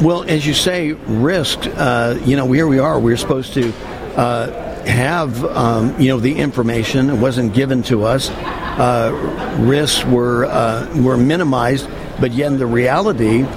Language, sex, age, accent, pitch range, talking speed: English, male, 60-79, American, 130-165 Hz, 160 wpm